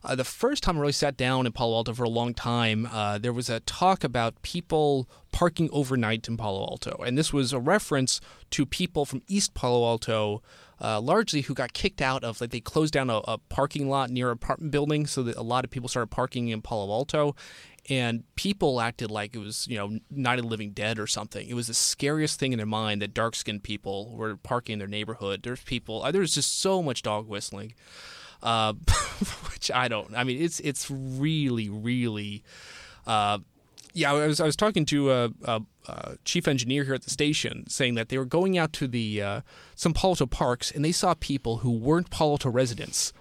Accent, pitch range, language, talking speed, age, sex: American, 115-150 Hz, English, 215 wpm, 20-39, male